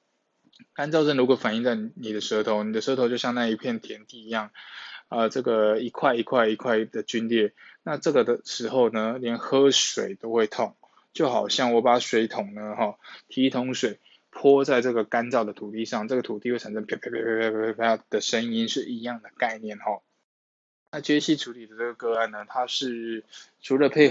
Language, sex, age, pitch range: Chinese, male, 20-39, 110-135 Hz